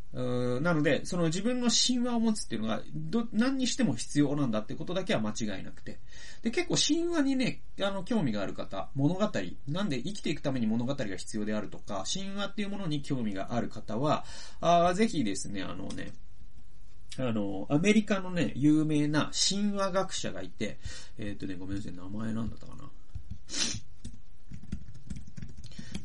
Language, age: Japanese, 30-49